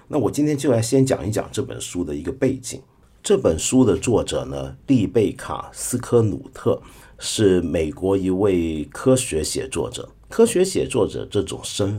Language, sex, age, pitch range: Chinese, male, 50-69, 100-130 Hz